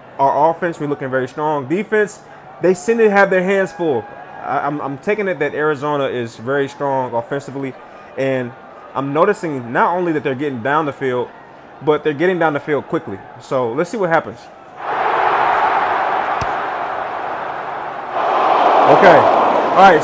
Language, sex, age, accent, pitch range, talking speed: English, male, 20-39, American, 145-185 Hz, 150 wpm